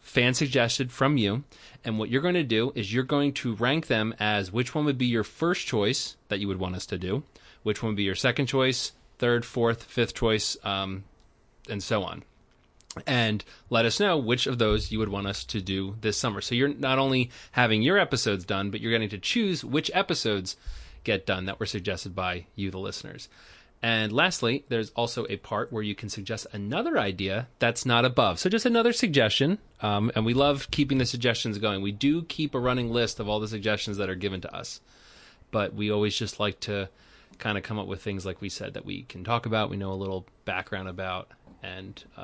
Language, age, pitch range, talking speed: English, 30-49, 100-130 Hz, 220 wpm